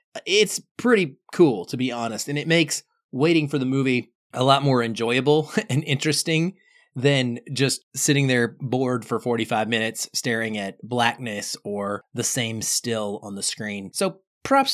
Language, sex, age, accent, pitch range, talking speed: English, male, 20-39, American, 125-170 Hz, 160 wpm